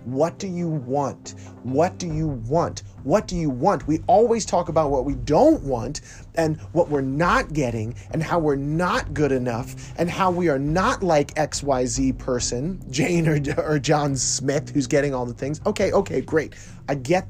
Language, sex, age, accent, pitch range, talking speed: English, male, 30-49, American, 125-165 Hz, 185 wpm